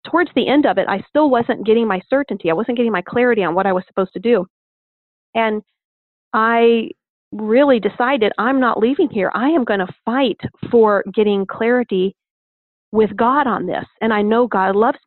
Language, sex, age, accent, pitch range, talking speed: English, female, 40-59, American, 195-235 Hz, 190 wpm